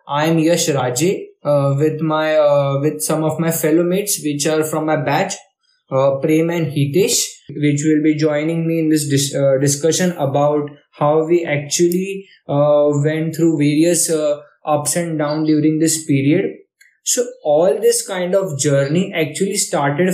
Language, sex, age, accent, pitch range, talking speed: Hindi, male, 20-39, native, 150-190 Hz, 165 wpm